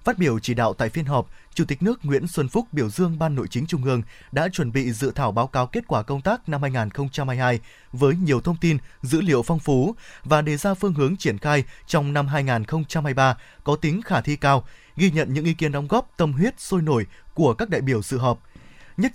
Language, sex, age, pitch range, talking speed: Vietnamese, male, 20-39, 130-175 Hz, 230 wpm